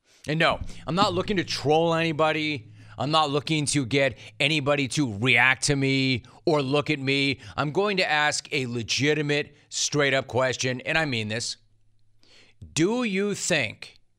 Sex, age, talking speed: male, 30-49, 155 wpm